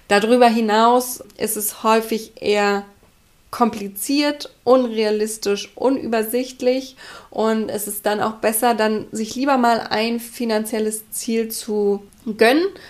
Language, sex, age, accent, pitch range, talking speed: German, female, 20-39, German, 205-245 Hz, 105 wpm